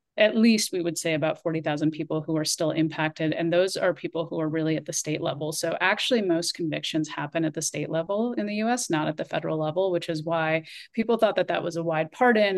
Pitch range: 160-180 Hz